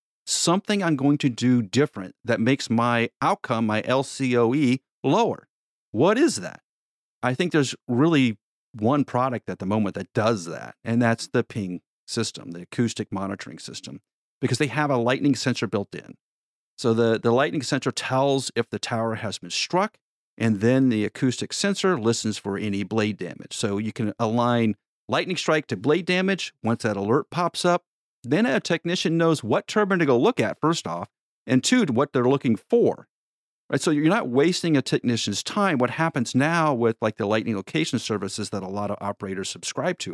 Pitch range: 105-140 Hz